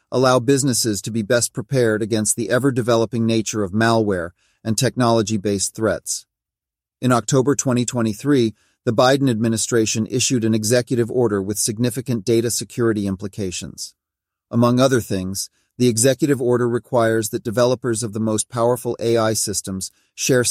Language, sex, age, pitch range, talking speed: English, male, 40-59, 110-120 Hz, 135 wpm